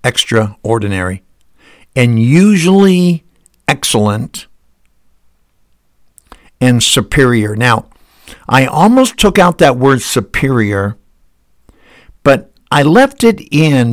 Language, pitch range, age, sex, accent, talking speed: English, 105-130 Hz, 60-79, male, American, 80 wpm